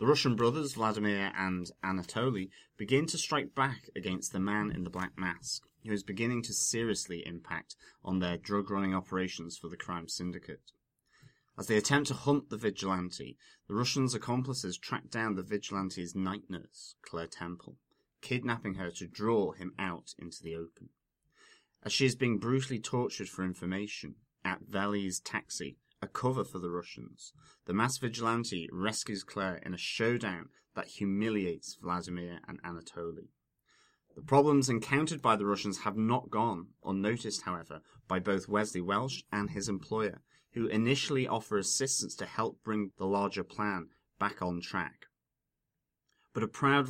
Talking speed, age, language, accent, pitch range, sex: 155 wpm, 30-49, English, British, 90-120 Hz, male